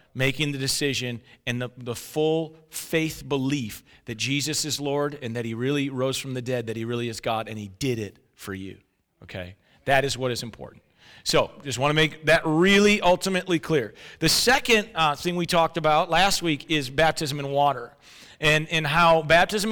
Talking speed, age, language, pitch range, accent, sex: 195 wpm, 40-59, Ukrainian, 145-180 Hz, American, male